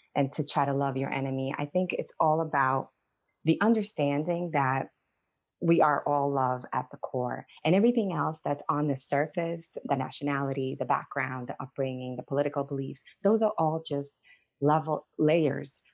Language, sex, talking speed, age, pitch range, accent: English, female, 165 wpm, 20-39, 140-160 Hz, American